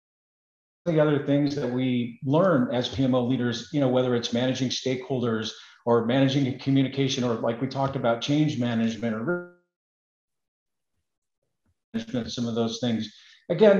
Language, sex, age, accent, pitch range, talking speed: English, male, 40-59, American, 125-145 Hz, 140 wpm